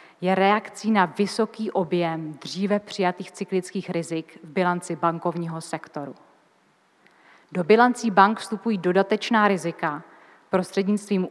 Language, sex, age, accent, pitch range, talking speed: Czech, female, 30-49, native, 170-210 Hz, 105 wpm